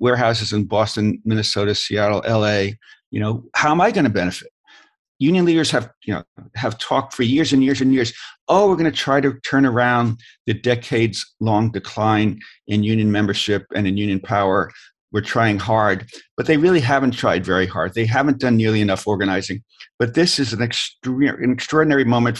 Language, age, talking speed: English, 50-69, 190 wpm